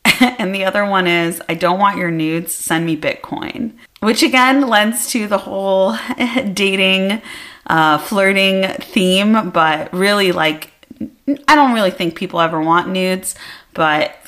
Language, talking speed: English, 145 wpm